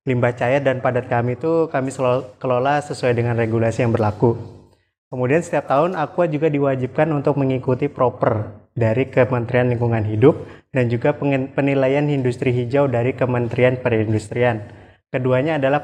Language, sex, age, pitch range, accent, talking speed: Indonesian, male, 20-39, 115-135 Hz, native, 140 wpm